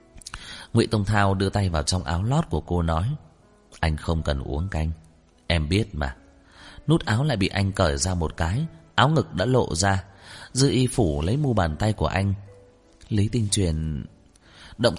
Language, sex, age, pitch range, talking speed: Vietnamese, male, 30-49, 85-120 Hz, 190 wpm